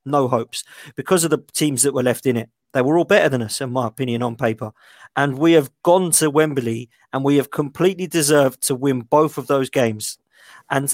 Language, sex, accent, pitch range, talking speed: English, male, British, 130-160 Hz, 220 wpm